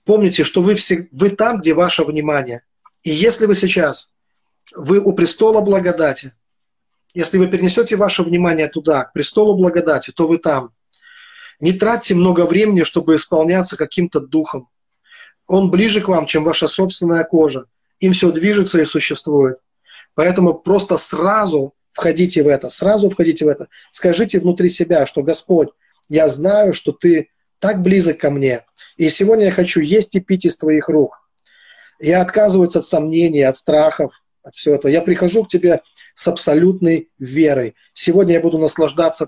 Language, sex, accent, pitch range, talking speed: Russian, male, native, 155-190 Hz, 155 wpm